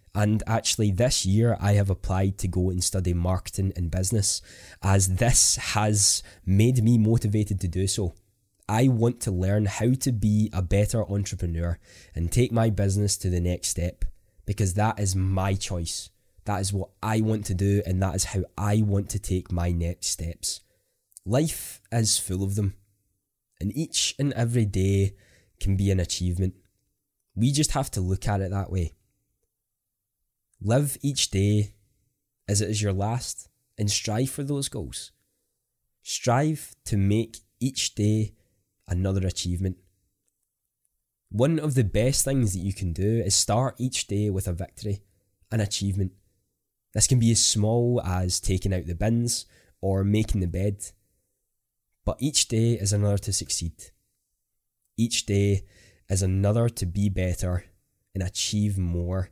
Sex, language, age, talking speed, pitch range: male, English, 20-39, 160 wpm, 95-110 Hz